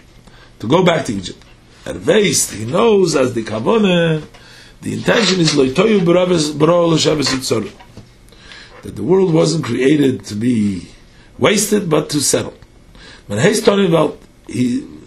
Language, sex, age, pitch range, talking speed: English, male, 50-69, 115-165 Hz, 110 wpm